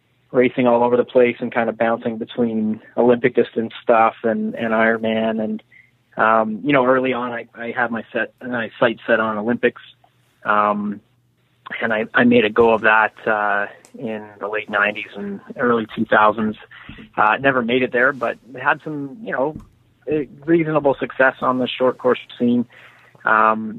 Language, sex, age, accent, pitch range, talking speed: English, male, 20-39, American, 110-125 Hz, 170 wpm